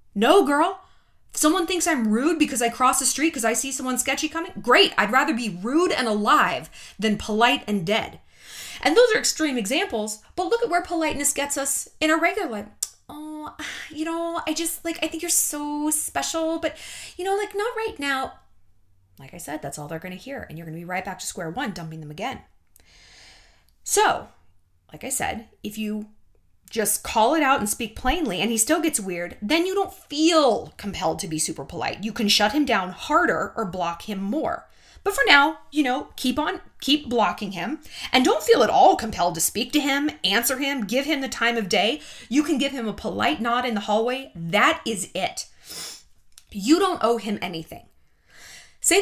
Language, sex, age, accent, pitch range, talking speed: English, female, 20-39, American, 205-310 Hz, 205 wpm